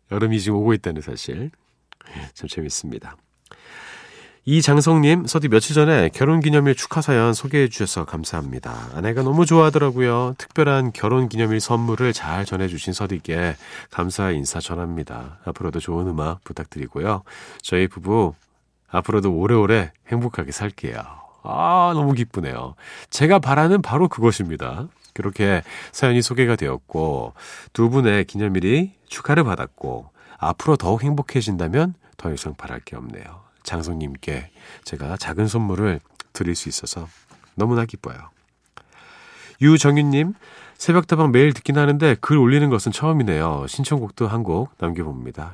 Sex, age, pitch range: male, 40-59, 85-140 Hz